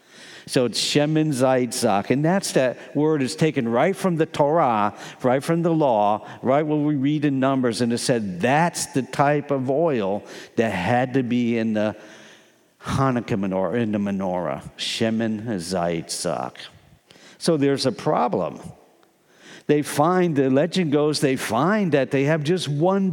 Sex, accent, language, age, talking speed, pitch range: male, American, English, 50-69, 160 wpm, 125-170 Hz